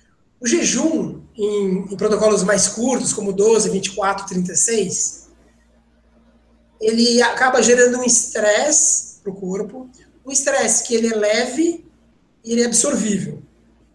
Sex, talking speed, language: male, 125 wpm, Portuguese